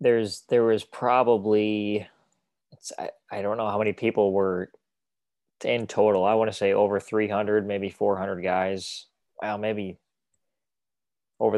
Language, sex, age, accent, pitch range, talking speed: English, male, 20-39, American, 95-105 Hz, 140 wpm